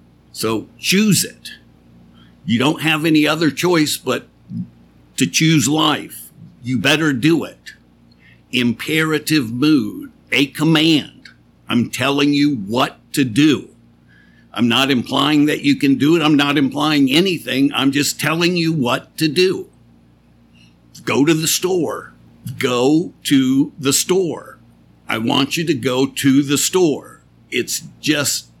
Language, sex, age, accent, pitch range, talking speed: English, male, 60-79, American, 120-155 Hz, 135 wpm